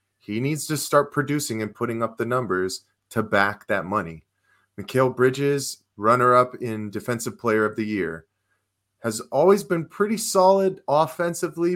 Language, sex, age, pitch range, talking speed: English, male, 30-49, 105-150 Hz, 150 wpm